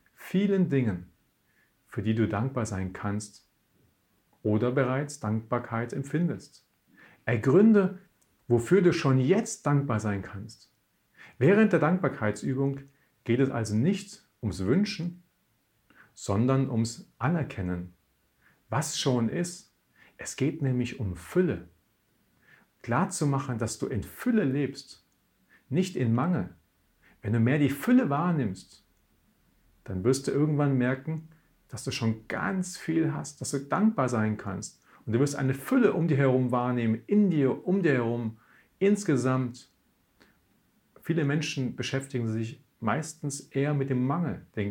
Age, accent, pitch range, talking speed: 40-59, German, 110-150 Hz, 130 wpm